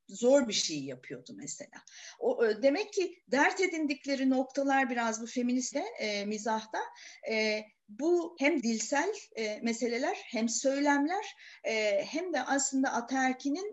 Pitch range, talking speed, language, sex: 225-290 Hz, 135 wpm, Turkish, female